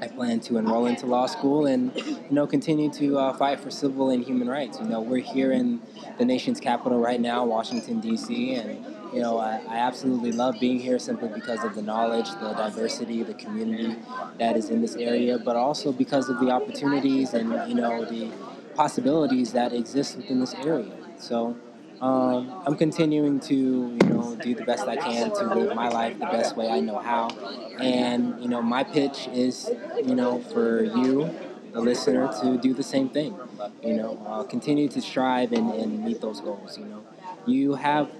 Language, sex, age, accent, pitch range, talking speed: English, male, 20-39, American, 115-150 Hz, 195 wpm